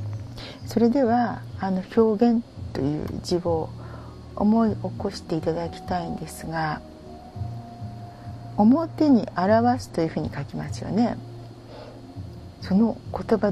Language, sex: Japanese, female